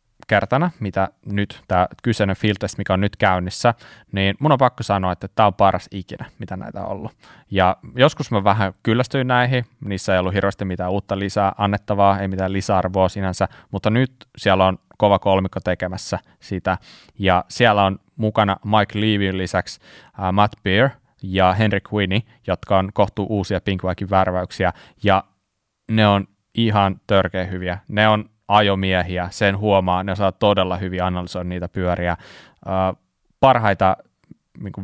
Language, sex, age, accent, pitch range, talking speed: Finnish, male, 20-39, native, 95-105 Hz, 155 wpm